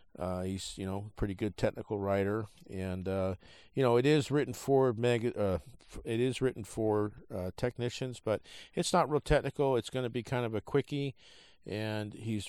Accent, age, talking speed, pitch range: American, 50-69, 185 wpm, 95-115 Hz